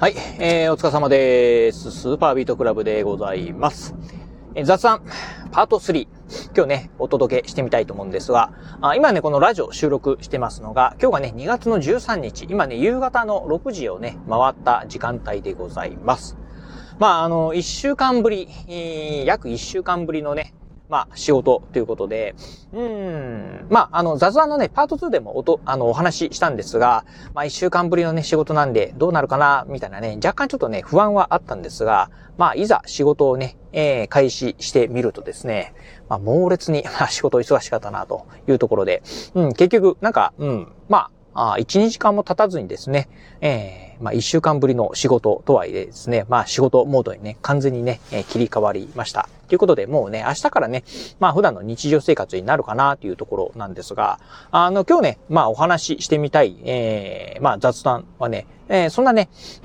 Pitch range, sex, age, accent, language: 130-210 Hz, male, 30-49, native, Japanese